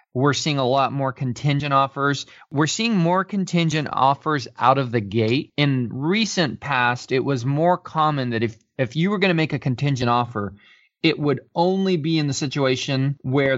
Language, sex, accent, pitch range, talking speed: English, male, American, 125-155 Hz, 185 wpm